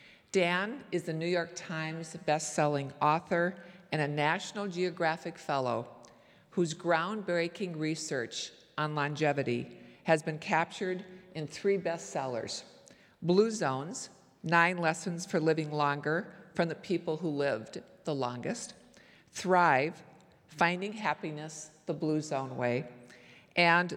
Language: English